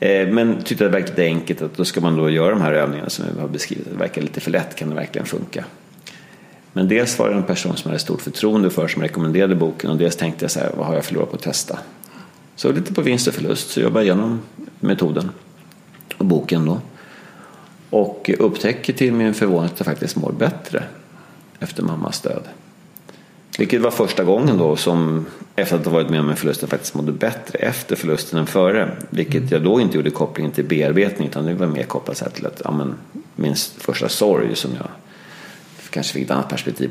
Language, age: Swedish, 40-59